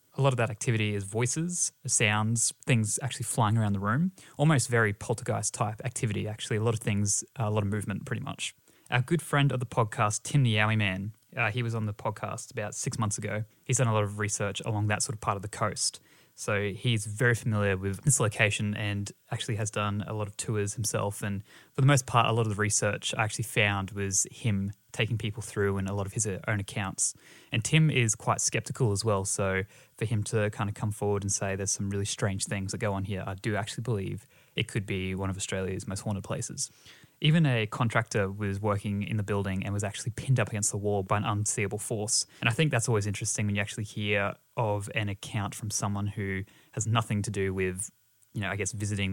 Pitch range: 100-120 Hz